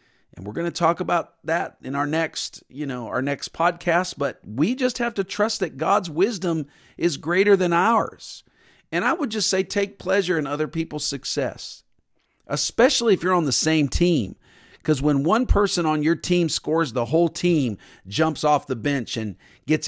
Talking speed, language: 190 wpm, English